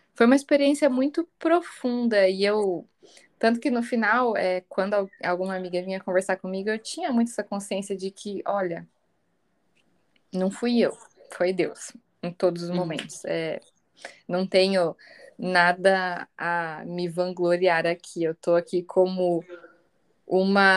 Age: 10-29